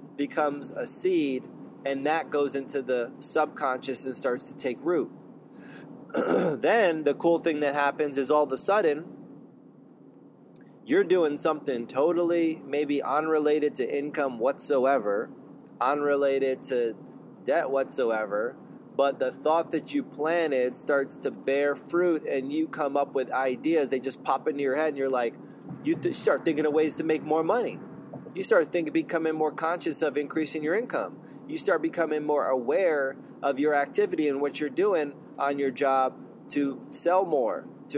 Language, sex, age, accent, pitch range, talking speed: English, male, 20-39, American, 135-165 Hz, 160 wpm